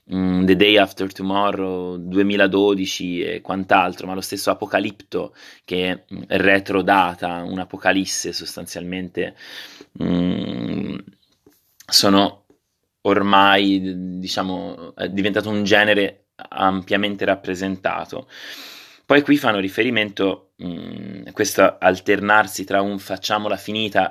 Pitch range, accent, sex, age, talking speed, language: 95-100 Hz, native, male, 20-39, 95 wpm, Italian